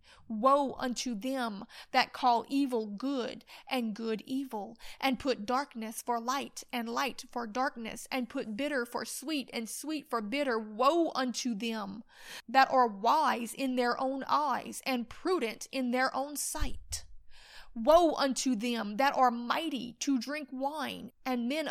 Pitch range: 230-275 Hz